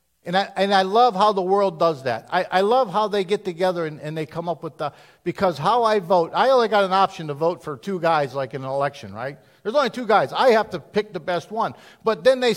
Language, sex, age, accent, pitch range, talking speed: English, male, 50-69, American, 180-245 Hz, 270 wpm